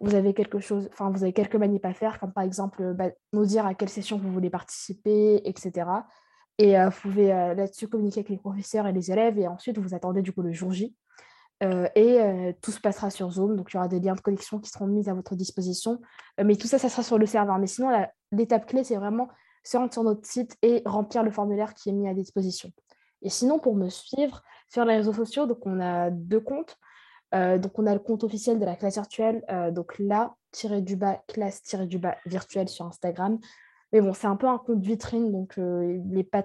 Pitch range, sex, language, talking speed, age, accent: 190-220 Hz, female, French, 245 wpm, 20-39, French